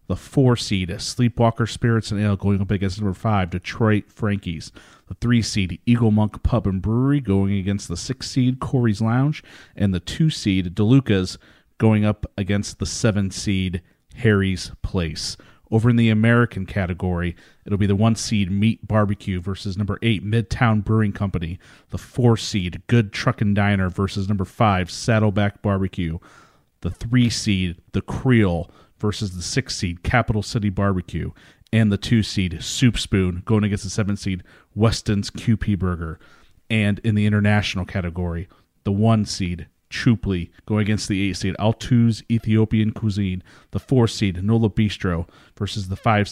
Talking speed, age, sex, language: 150 wpm, 40-59, male, English